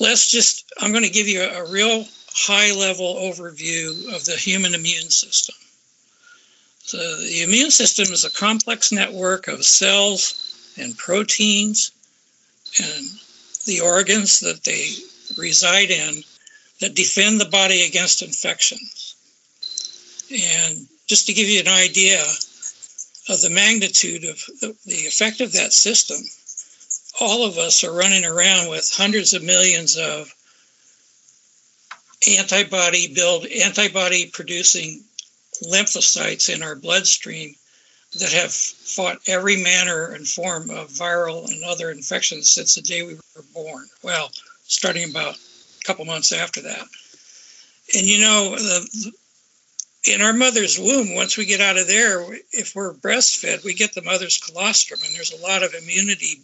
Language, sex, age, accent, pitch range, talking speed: English, male, 60-79, American, 180-220 Hz, 135 wpm